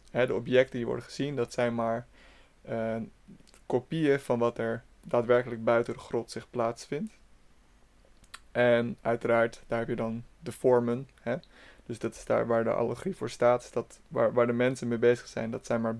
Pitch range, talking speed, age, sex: 115-125 Hz, 175 wpm, 20-39, male